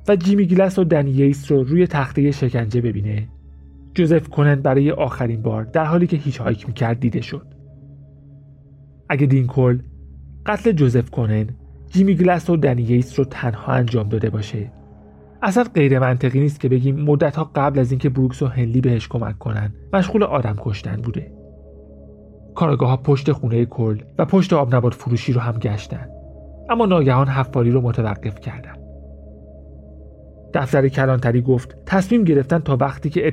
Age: 40-59